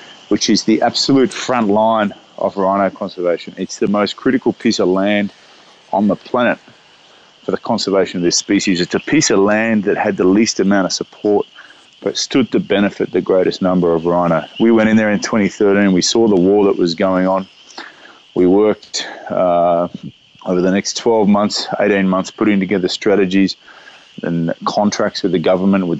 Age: 20-39